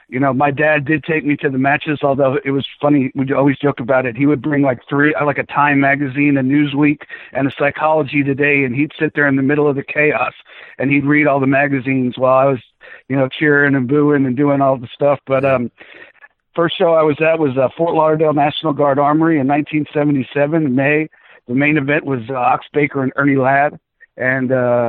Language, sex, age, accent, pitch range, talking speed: English, male, 50-69, American, 135-150 Hz, 220 wpm